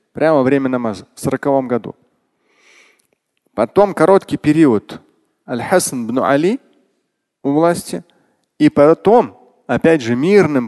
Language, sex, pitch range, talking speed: Russian, male, 130-215 Hz, 105 wpm